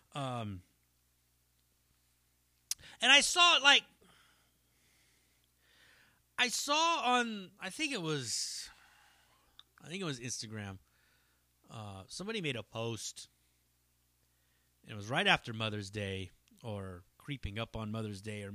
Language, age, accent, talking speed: English, 30-49, American, 120 wpm